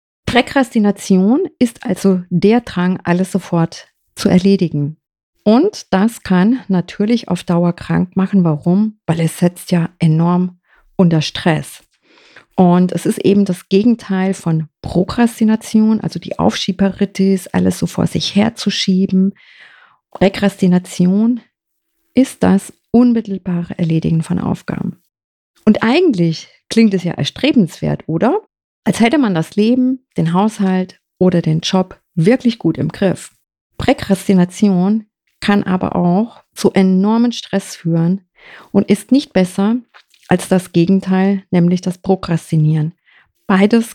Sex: female